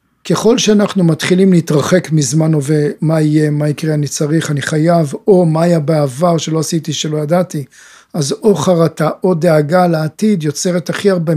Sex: male